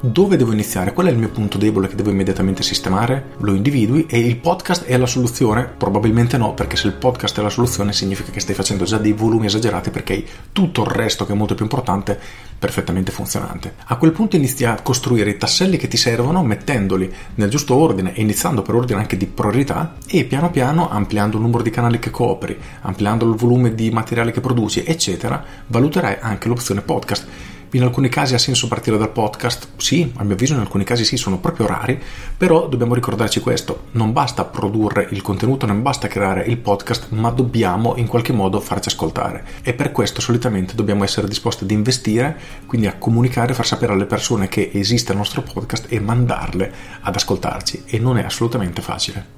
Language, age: Italian, 40-59